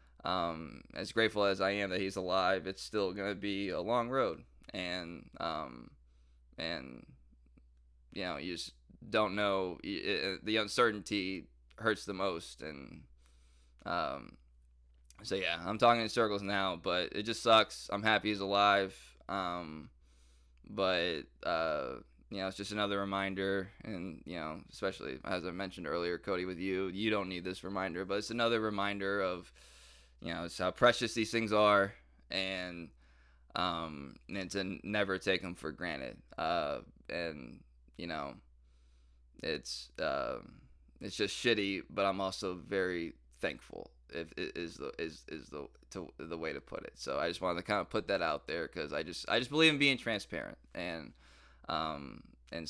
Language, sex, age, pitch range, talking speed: English, male, 20-39, 65-100 Hz, 165 wpm